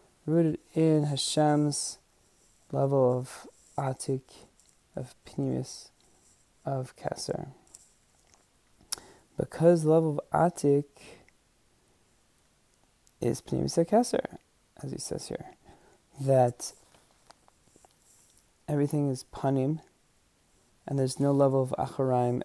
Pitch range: 130-155 Hz